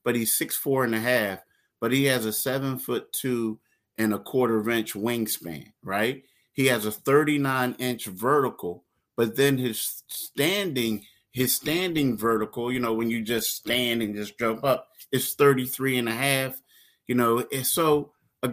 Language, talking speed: English, 170 wpm